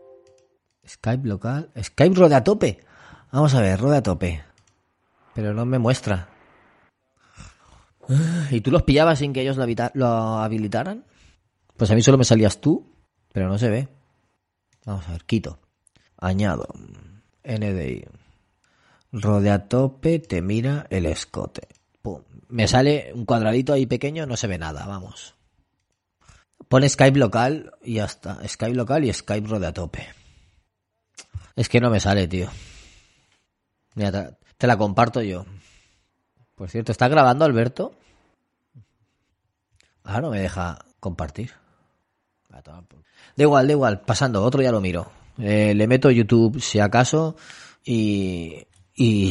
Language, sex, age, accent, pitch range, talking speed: Spanish, male, 30-49, Spanish, 95-125 Hz, 135 wpm